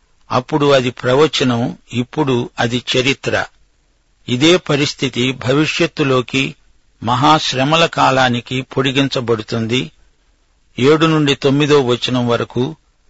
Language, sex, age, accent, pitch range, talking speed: Telugu, male, 60-79, native, 125-155 Hz, 80 wpm